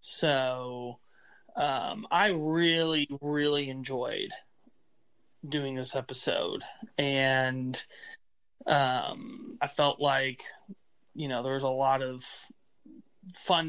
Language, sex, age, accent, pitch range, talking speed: English, male, 30-49, American, 150-195 Hz, 95 wpm